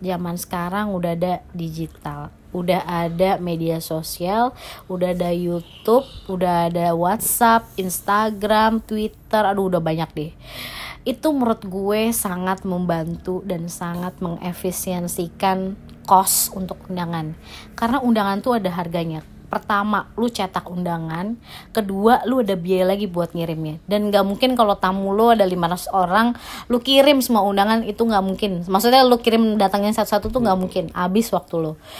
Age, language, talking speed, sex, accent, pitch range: 30-49, Indonesian, 140 wpm, female, native, 180-215 Hz